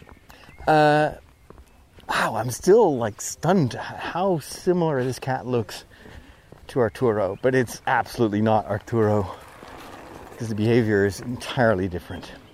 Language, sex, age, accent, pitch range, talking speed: English, male, 30-49, American, 110-150 Hz, 115 wpm